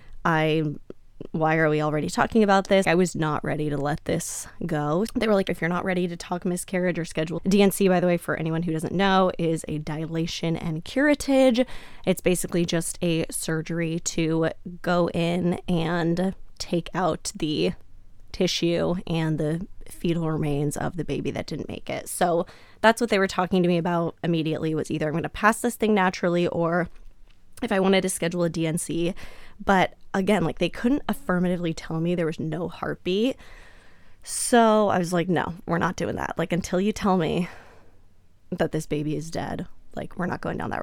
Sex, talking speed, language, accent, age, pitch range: female, 190 wpm, English, American, 20-39, 160-190 Hz